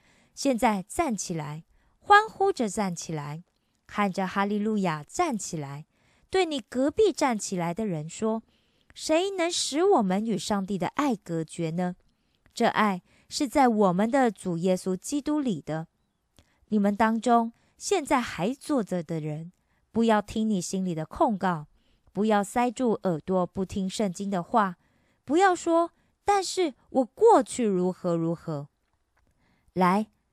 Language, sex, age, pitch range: Korean, female, 20-39, 180-255 Hz